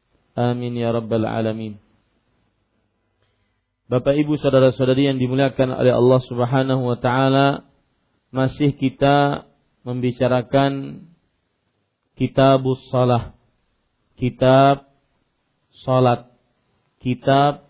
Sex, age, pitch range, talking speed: male, 40-59, 120-135 Hz, 70 wpm